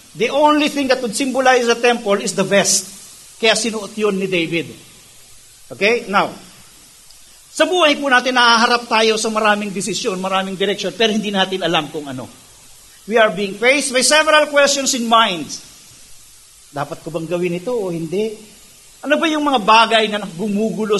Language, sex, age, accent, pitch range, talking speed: English, male, 50-69, Filipino, 170-235 Hz, 165 wpm